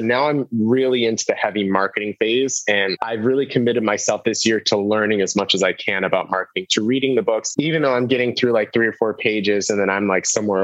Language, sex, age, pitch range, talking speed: English, male, 20-39, 105-130 Hz, 245 wpm